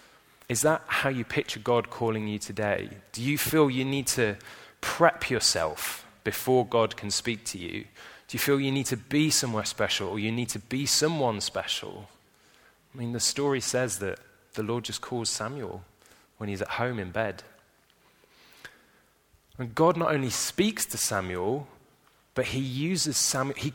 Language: English